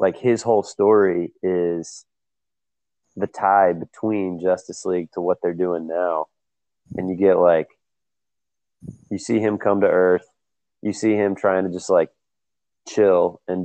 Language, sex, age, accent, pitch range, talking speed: English, male, 20-39, American, 85-95 Hz, 150 wpm